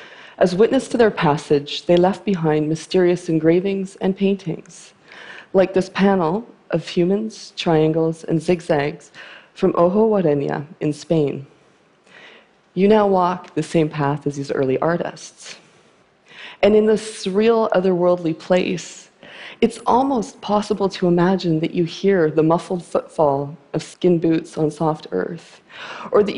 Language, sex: Chinese, female